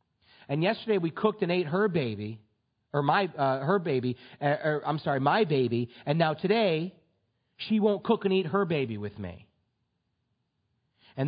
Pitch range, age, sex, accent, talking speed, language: 115-155 Hz, 40-59, male, American, 170 wpm, English